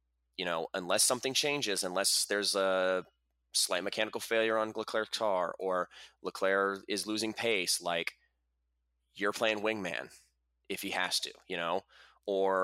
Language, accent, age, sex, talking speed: English, American, 20-39, male, 145 wpm